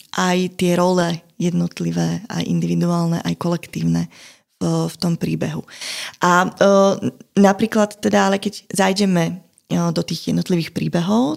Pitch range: 170-205 Hz